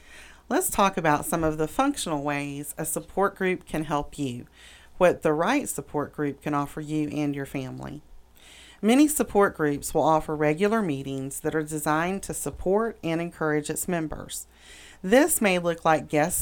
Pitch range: 145-185 Hz